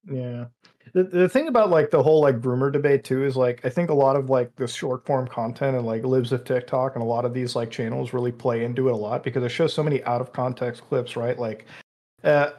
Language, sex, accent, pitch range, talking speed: English, male, American, 125-150 Hz, 260 wpm